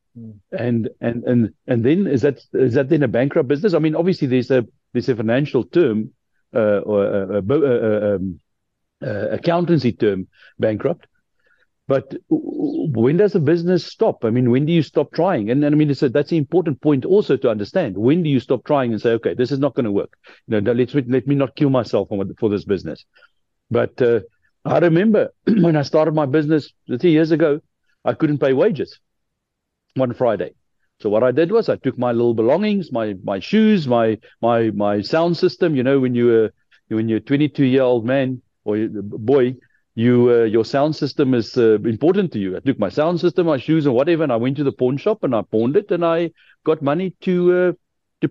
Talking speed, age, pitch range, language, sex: 210 wpm, 60-79, 115-165 Hz, English, male